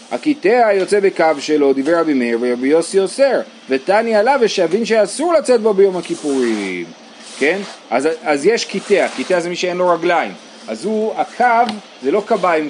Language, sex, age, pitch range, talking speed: Hebrew, male, 30-49, 135-215 Hz, 165 wpm